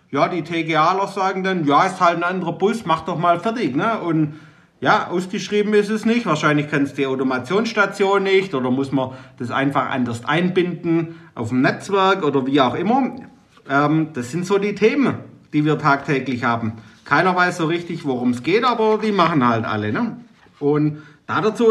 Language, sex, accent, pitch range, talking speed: German, male, German, 140-195 Hz, 190 wpm